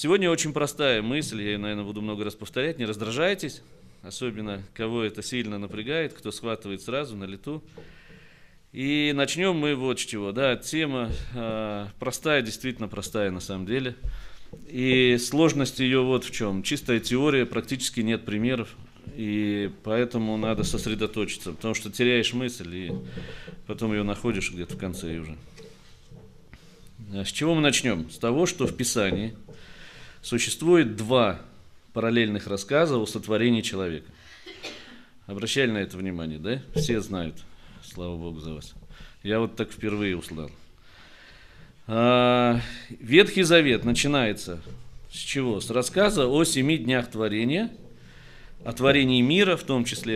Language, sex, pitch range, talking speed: Russian, male, 105-130 Hz, 135 wpm